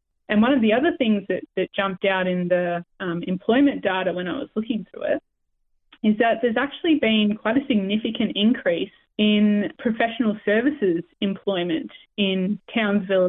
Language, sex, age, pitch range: English, female, 20-39, 195-230 Hz